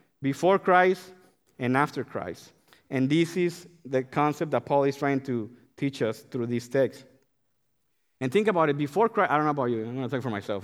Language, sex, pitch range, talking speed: English, male, 125-160 Hz, 210 wpm